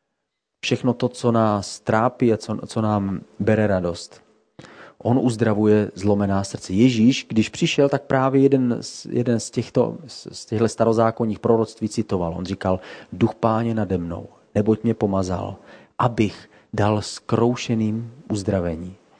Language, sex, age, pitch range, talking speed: Czech, male, 40-59, 105-125 Hz, 130 wpm